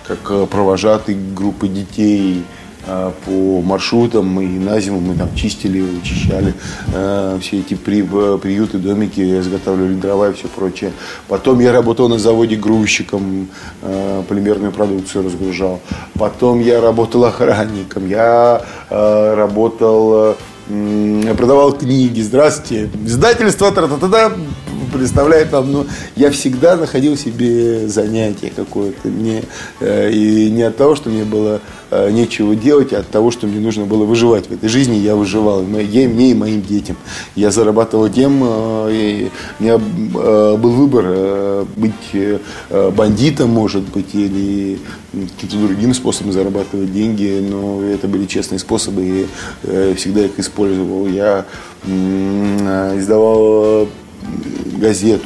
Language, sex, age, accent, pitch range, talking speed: Russian, male, 20-39, native, 95-110 Hz, 130 wpm